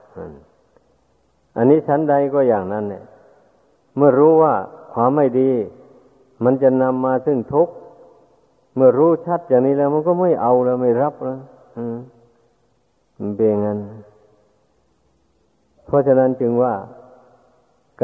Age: 60-79